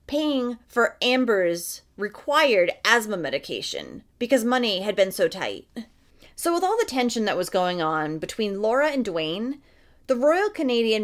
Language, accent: English, American